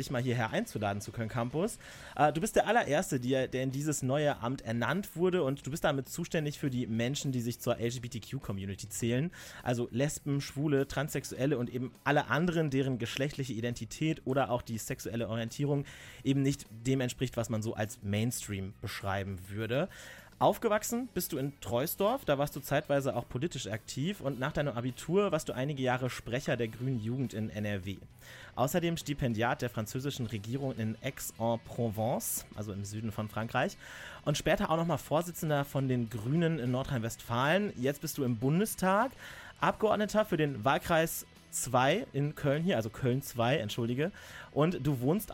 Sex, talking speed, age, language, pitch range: male, 165 wpm, 30-49, German, 120-150 Hz